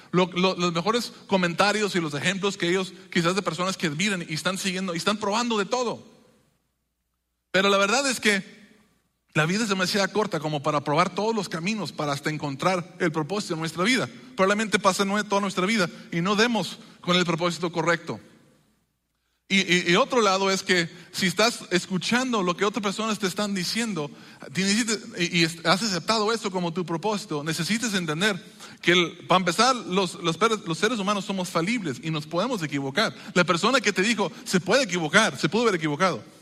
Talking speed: 190 wpm